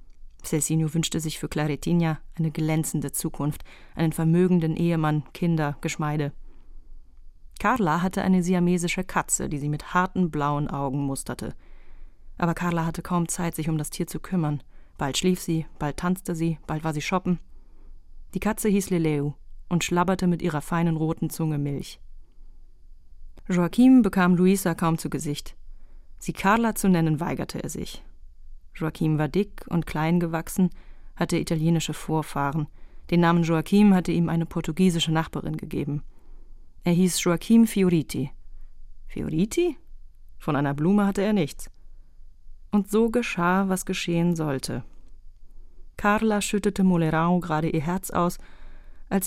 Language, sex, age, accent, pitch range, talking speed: German, female, 30-49, German, 145-180 Hz, 140 wpm